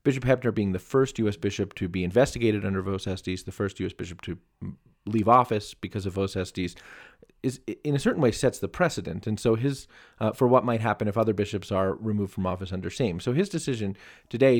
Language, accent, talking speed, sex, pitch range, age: English, American, 215 wpm, male, 95-130 Hz, 30-49